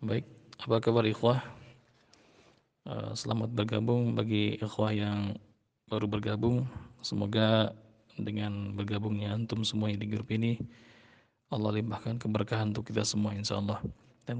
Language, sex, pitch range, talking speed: Malay, male, 105-115 Hz, 115 wpm